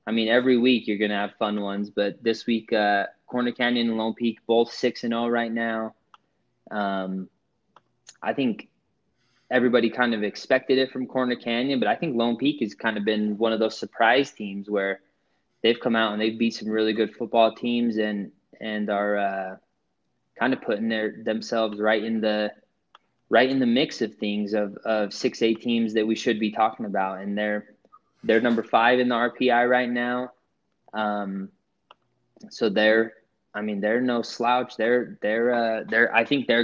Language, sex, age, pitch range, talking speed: English, male, 20-39, 110-120 Hz, 190 wpm